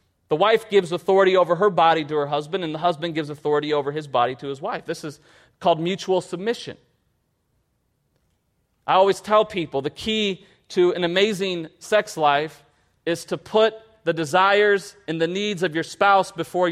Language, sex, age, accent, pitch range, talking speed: English, male, 30-49, American, 175-235 Hz, 175 wpm